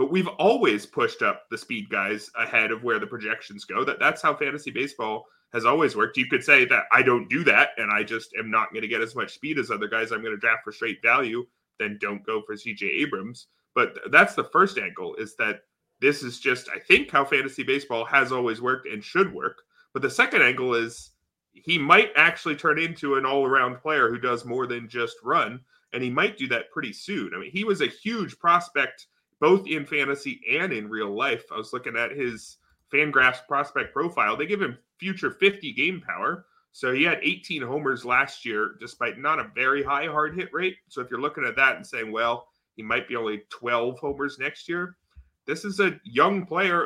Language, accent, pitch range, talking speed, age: English, American, 120-185 Hz, 220 wpm, 30-49